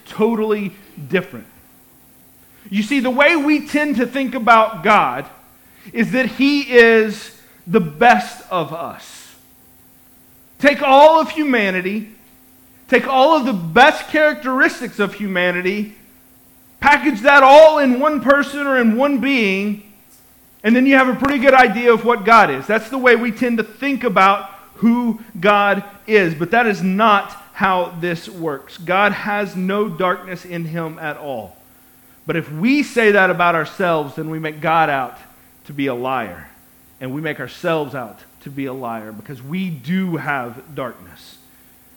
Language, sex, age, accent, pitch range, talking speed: English, male, 40-59, American, 165-245 Hz, 155 wpm